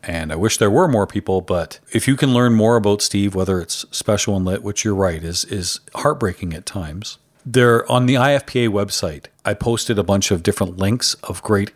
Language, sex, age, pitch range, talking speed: English, male, 40-59, 100-120 Hz, 215 wpm